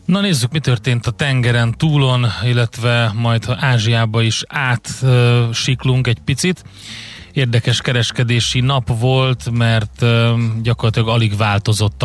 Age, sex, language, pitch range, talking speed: 30-49, male, Hungarian, 105-120 Hz, 120 wpm